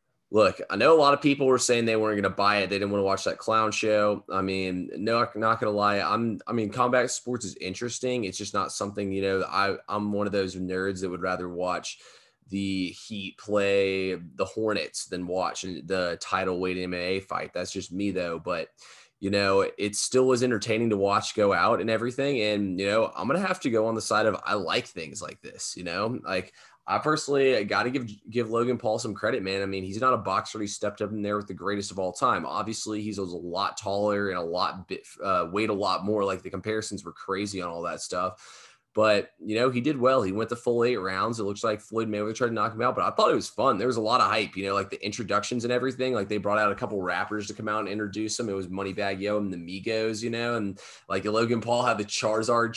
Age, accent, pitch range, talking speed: 20-39, American, 95-115 Hz, 255 wpm